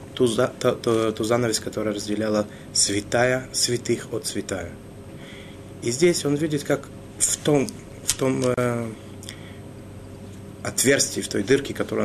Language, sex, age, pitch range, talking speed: Russian, male, 30-49, 100-120 Hz, 130 wpm